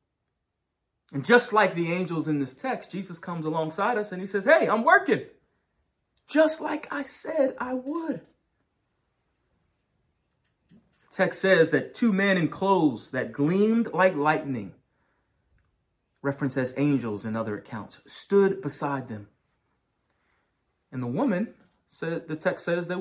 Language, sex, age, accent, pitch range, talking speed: English, male, 30-49, American, 120-195 Hz, 140 wpm